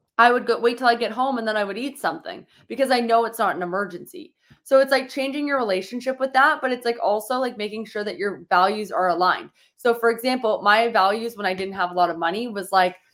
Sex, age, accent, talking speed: female, 20-39, American, 255 wpm